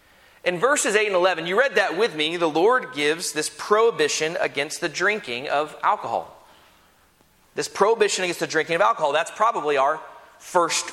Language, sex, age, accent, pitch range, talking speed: English, male, 30-49, American, 160-205 Hz, 170 wpm